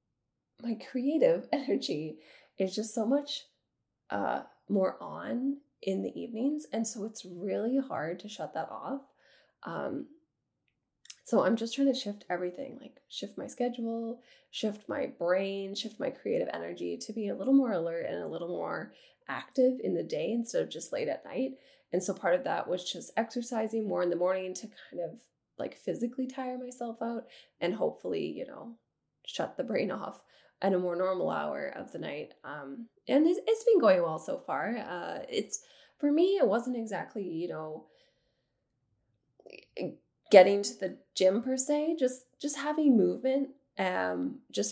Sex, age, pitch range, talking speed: female, 10-29, 195-275 Hz, 170 wpm